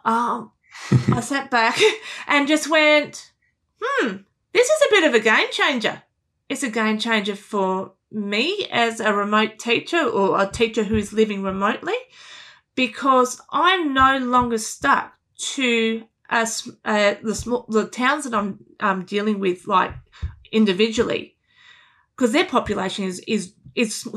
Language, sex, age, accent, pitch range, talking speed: English, female, 30-49, Australian, 210-265 Hz, 135 wpm